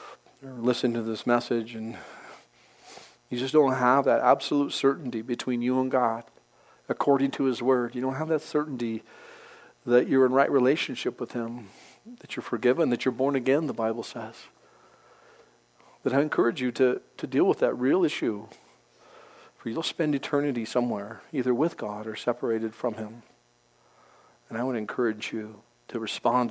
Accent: American